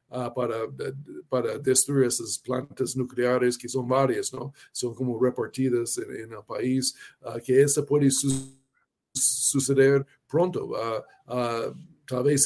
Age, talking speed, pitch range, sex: 50-69, 140 wpm, 125-145 Hz, male